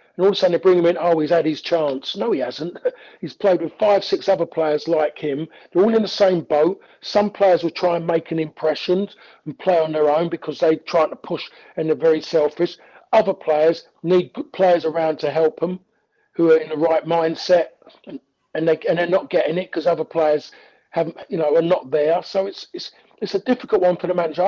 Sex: male